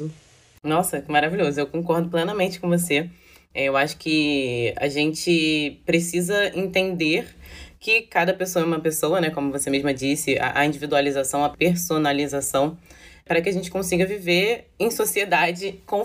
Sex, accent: female, Brazilian